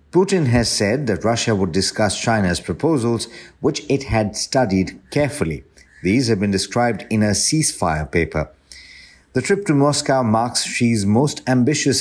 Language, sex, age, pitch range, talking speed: English, male, 50-69, 95-125 Hz, 150 wpm